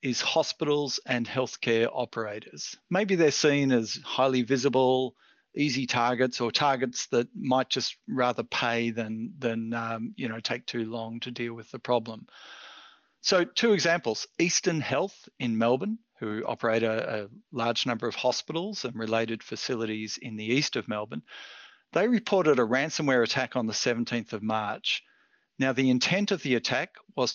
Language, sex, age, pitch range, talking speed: English, male, 50-69, 115-150 Hz, 160 wpm